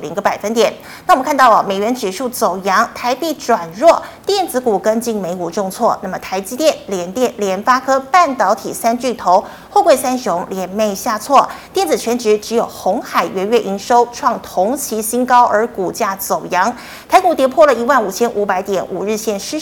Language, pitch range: Chinese, 200-270 Hz